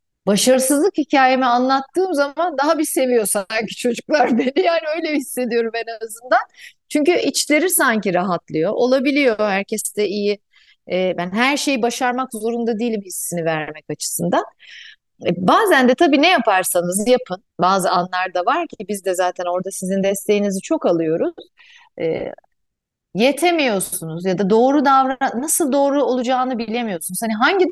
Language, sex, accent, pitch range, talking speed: Turkish, female, native, 190-270 Hz, 130 wpm